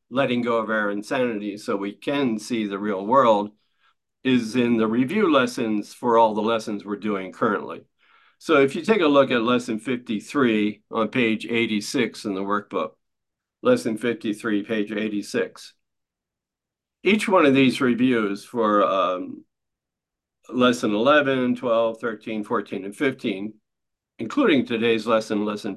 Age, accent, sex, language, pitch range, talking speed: 50-69, American, male, English, 105-125 Hz, 140 wpm